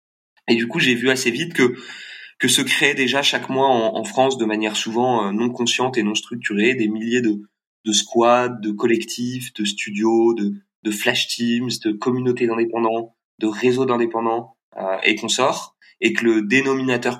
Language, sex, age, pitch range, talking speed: French, male, 20-39, 115-130 Hz, 180 wpm